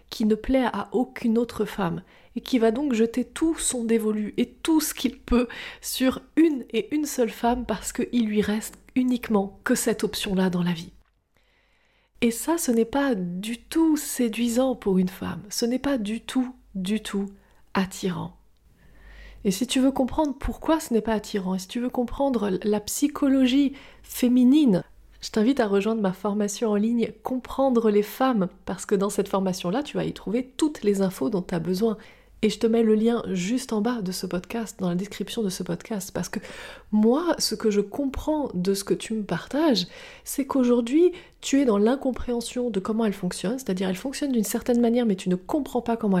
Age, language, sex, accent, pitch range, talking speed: 30-49, French, female, French, 200-255 Hz, 200 wpm